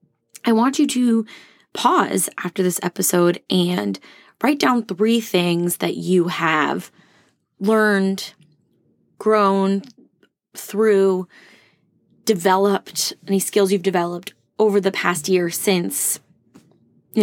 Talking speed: 105 wpm